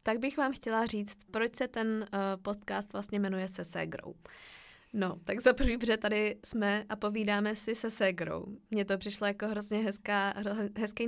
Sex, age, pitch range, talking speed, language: female, 20-39, 200-235 Hz, 155 wpm, Czech